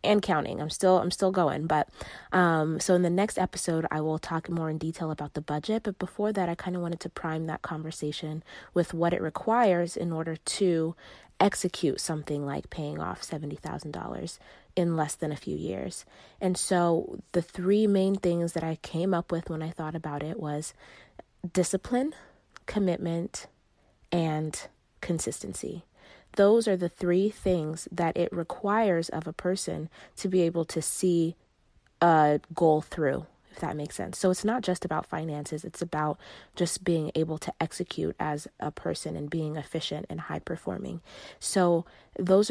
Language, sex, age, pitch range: English, female, 20-39, 155-185 Hz